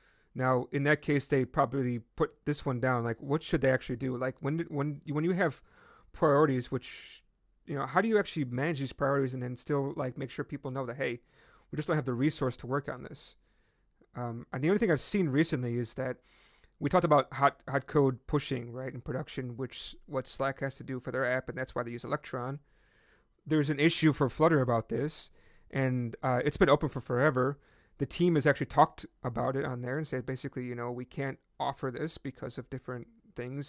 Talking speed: 220 wpm